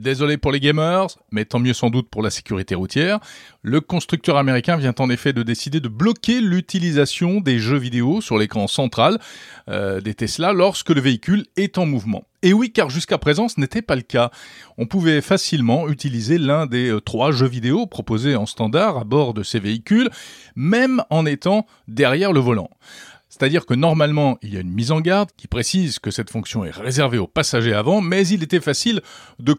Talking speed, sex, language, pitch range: 195 wpm, male, French, 115-165 Hz